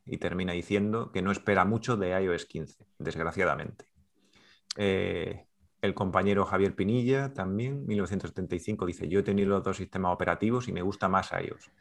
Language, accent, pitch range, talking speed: Spanish, Spanish, 85-100 Hz, 160 wpm